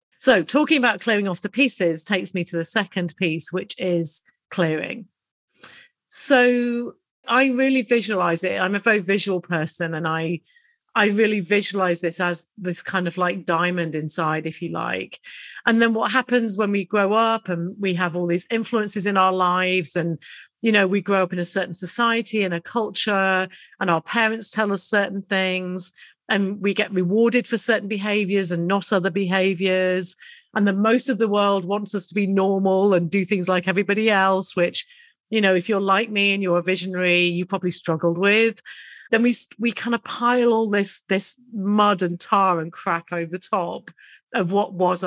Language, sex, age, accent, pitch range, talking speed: English, female, 40-59, British, 180-220 Hz, 190 wpm